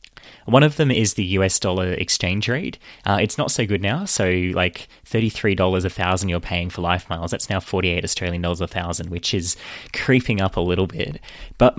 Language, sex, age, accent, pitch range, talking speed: English, male, 20-39, Australian, 90-125 Hz, 210 wpm